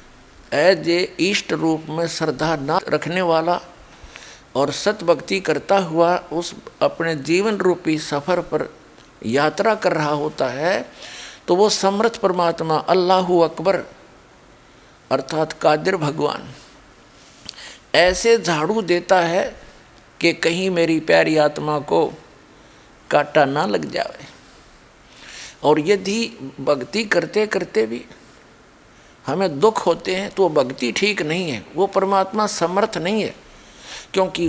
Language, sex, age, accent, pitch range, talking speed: Hindi, male, 50-69, native, 155-195 Hz, 120 wpm